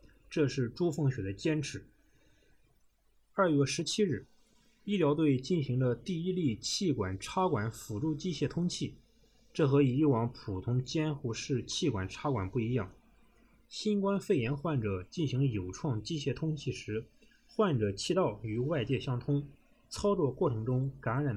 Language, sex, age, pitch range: Chinese, male, 20-39, 115-150 Hz